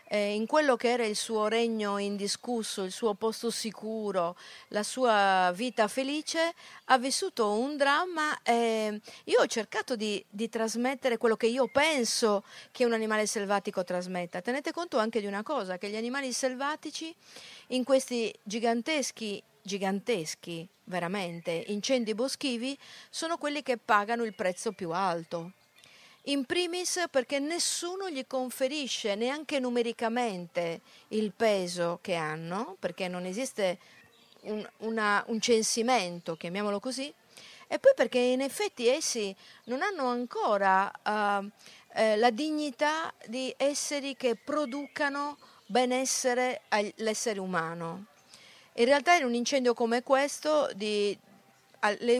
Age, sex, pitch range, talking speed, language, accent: 50-69, female, 205-270 Hz, 125 wpm, Italian, native